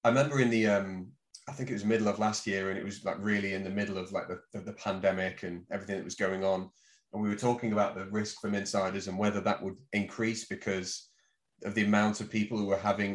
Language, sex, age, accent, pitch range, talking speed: English, male, 30-49, British, 100-115 Hz, 255 wpm